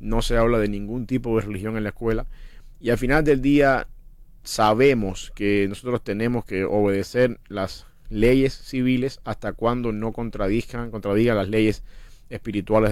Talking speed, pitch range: 155 wpm, 105-120 Hz